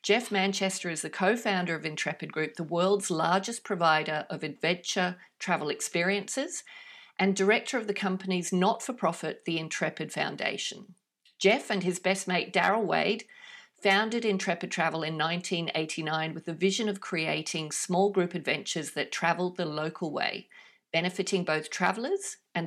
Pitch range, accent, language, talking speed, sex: 170-210 Hz, Australian, English, 145 wpm, female